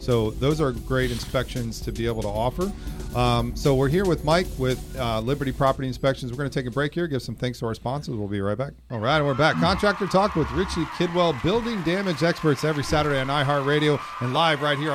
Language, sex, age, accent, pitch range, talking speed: English, male, 40-59, American, 125-155 Hz, 235 wpm